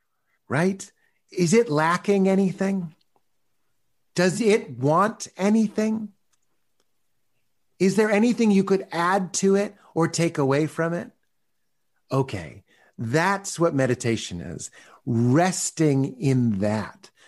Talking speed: 105 wpm